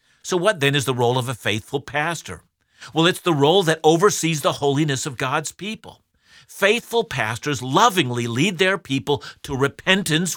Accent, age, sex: American, 50-69, male